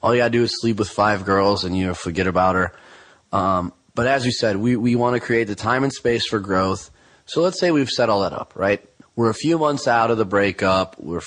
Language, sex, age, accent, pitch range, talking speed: English, male, 30-49, American, 95-120 Hz, 260 wpm